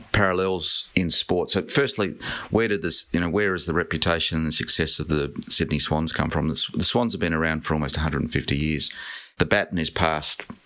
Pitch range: 75-80 Hz